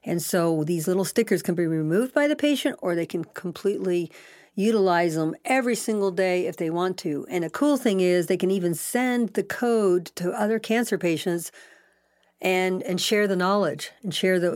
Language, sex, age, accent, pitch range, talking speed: English, female, 50-69, American, 170-200 Hz, 195 wpm